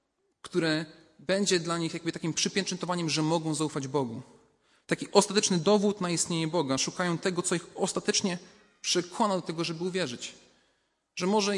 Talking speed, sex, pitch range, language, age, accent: 150 wpm, male, 140-180 Hz, Polish, 30-49, native